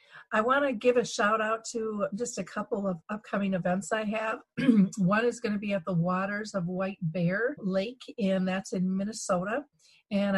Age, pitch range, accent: 40-59, 185-210 Hz, American